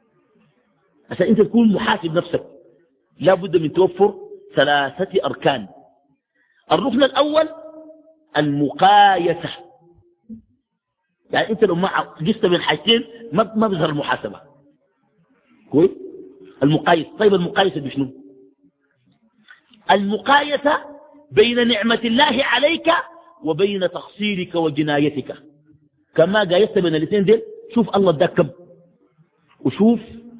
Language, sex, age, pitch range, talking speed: Arabic, male, 50-69, 155-240 Hz, 90 wpm